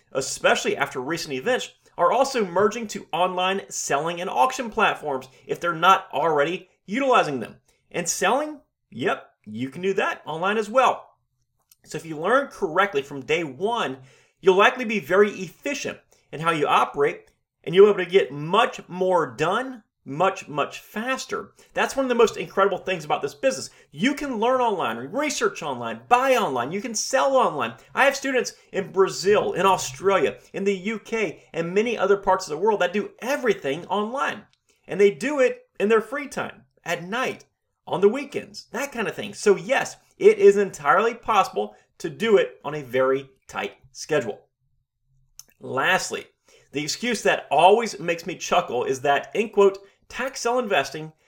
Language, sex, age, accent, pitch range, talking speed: English, male, 30-49, American, 165-245 Hz, 170 wpm